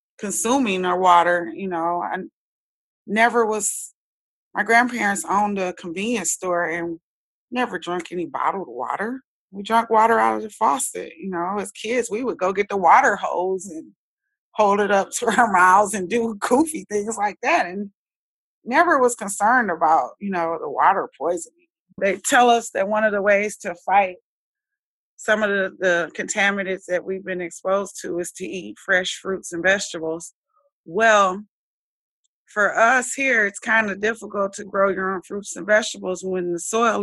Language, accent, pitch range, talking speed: English, American, 180-220 Hz, 170 wpm